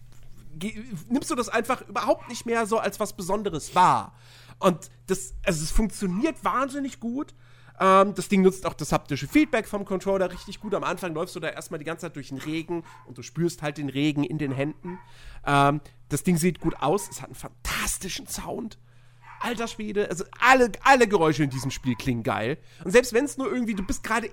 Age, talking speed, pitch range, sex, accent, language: 40-59, 205 wpm, 135-210 Hz, male, German, German